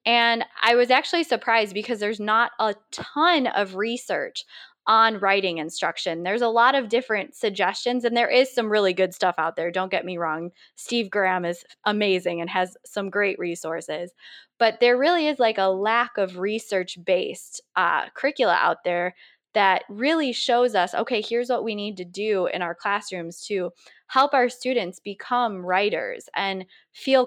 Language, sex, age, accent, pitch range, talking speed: English, female, 20-39, American, 190-245 Hz, 170 wpm